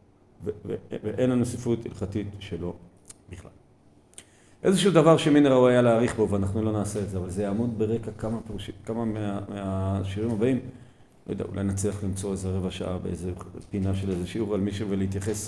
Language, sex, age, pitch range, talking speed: Hebrew, male, 40-59, 100-150 Hz, 185 wpm